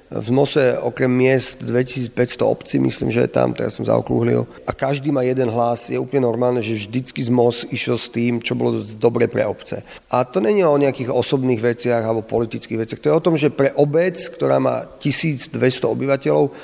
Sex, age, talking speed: male, 40-59, 190 wpm